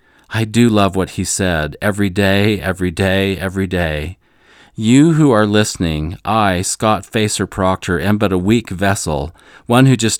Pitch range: 90-105 Hz